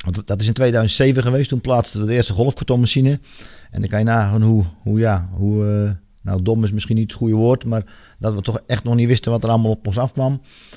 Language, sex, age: Dutch, male, 40-59